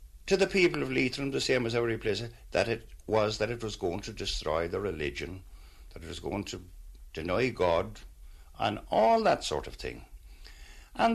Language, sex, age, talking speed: English, male, 60-79, 190 wpm